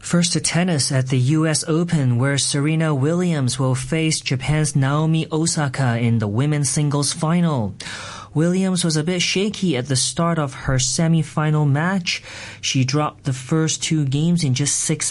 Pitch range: 115-155 Hz